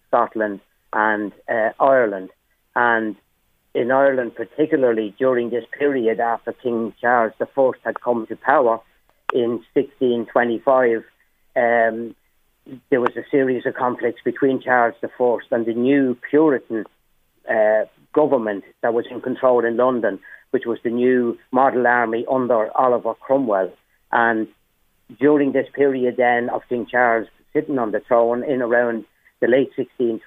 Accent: British